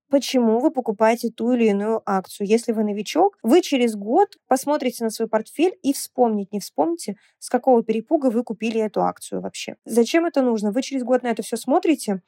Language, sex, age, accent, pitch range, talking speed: Russian, female, 20-39, native, 220-265 Hz, 190 wpm